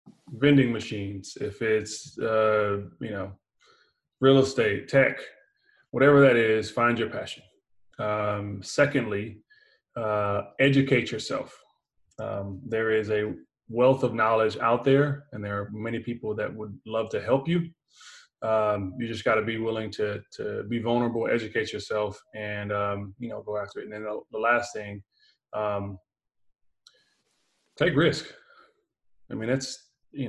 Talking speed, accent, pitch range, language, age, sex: 145 wpm, American, 105-125 Hz, English, 20-39, male